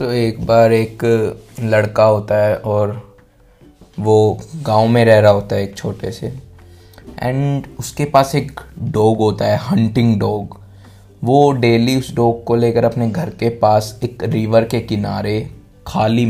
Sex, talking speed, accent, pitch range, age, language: male, 155 wpm, native, 105-120 Hz, 20-39, Hindi